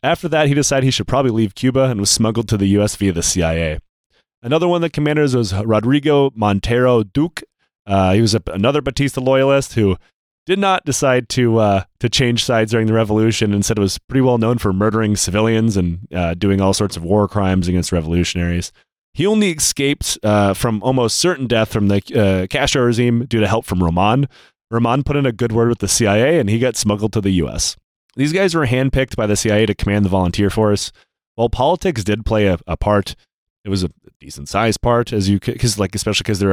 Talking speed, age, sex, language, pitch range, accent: 215 wpm, 30-49, male, English, 100-130 Hz, American